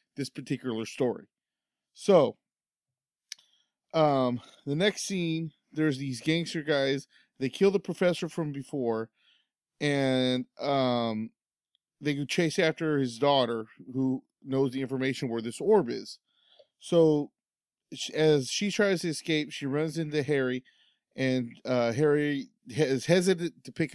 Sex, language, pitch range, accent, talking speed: male, English, 130-165 Hz, American, 125 wpm